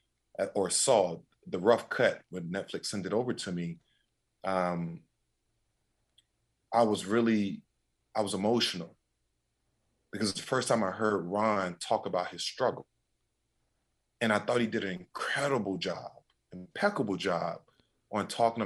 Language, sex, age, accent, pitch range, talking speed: English, male, 30-49, American, 95-115 Hz, 140 wpm